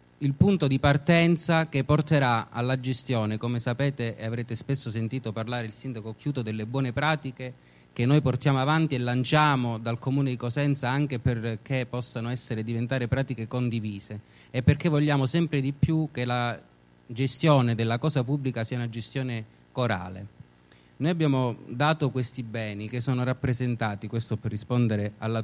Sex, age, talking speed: male, 30-49, 155 wpm